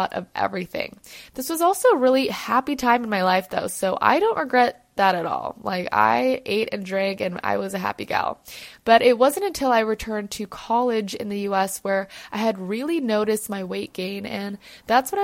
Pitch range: 195-250 Hz